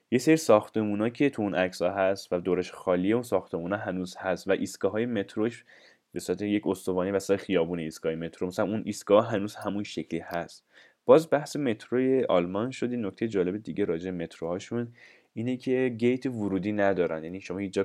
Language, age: Persian, 10-29